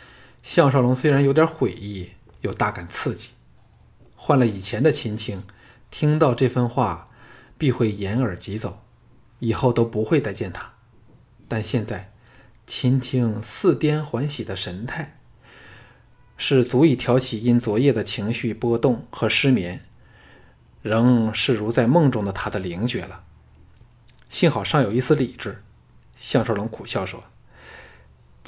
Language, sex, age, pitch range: Chinese, male, 20-39, 105-130 Hz